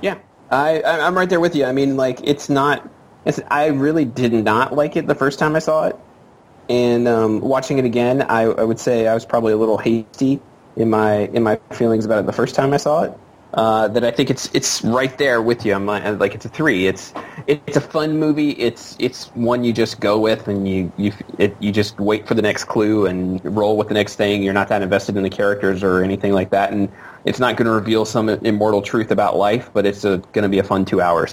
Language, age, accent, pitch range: English, 20-39, American, 105-135 Hz